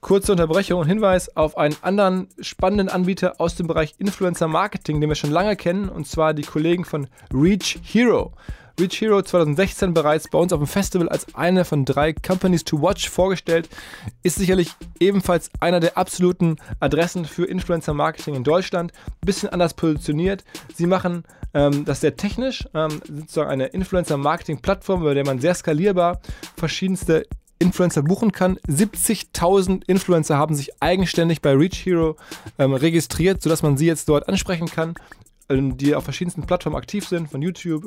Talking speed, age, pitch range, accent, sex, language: 160 wpm, 20-39, 150-185 Hz, German, male, German